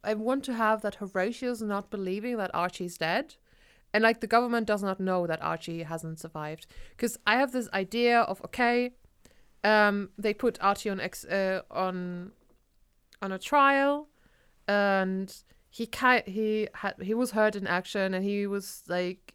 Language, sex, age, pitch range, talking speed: English, female, 20-39, 185-230 Hz, 165 wpm